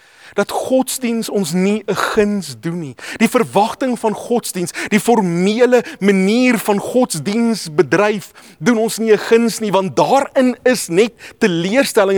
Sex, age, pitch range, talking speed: male, 30-49, 175-240 Hz, 145 wpm